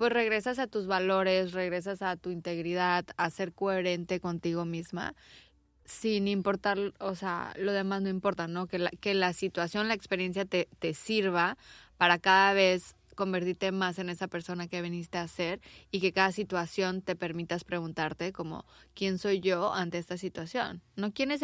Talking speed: 175 wpm